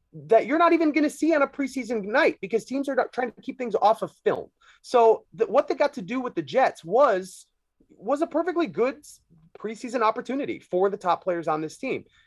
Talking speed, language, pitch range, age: 220 wpm, English, 140-220 Hz, 30-49